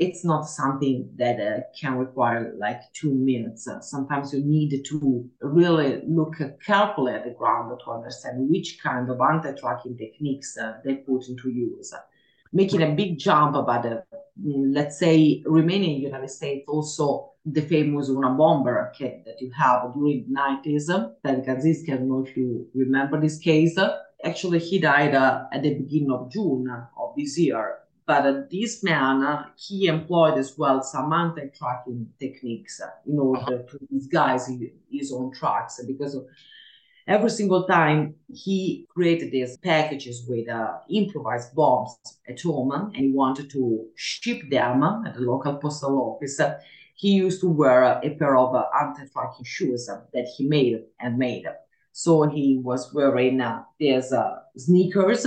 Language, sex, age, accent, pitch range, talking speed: English, female, 30-49, Italian, 130-160 Hz, 165 wpm